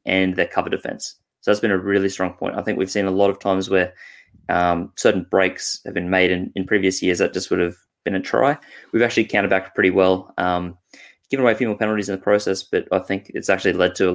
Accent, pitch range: Australian, 90-100 Hz